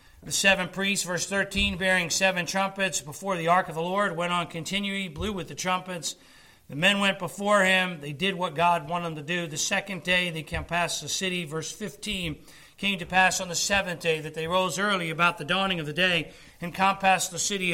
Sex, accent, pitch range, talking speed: male, American, 160-195 Hz, 225 wpm